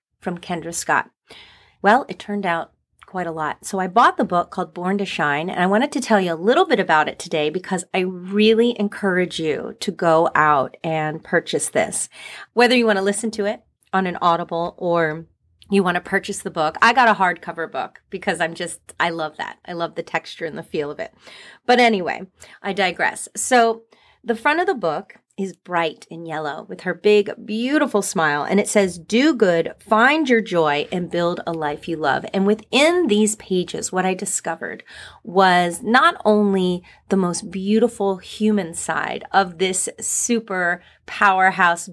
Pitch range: 175-215 Hz